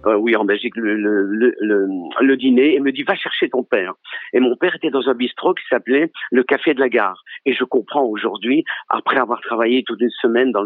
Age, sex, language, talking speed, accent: 50-69, male, French, 235 wpm, French